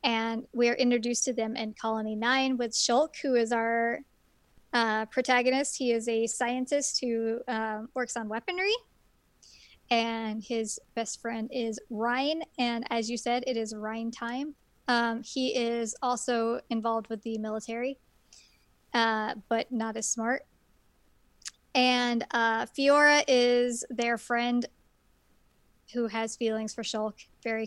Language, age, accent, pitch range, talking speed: English, 20-39, American, 225-245 Hz, 140 wpm